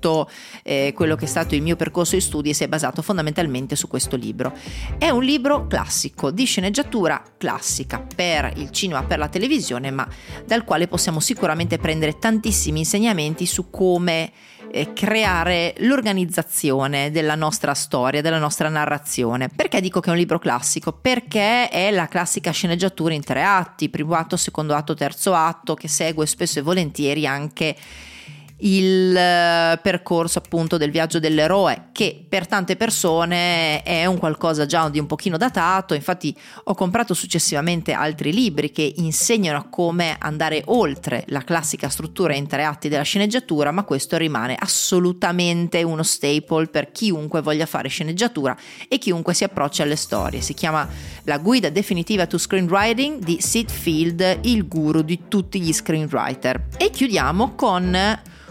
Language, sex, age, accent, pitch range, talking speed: Italian, female, 30-49, native, 155-190 Hz, 155 wpm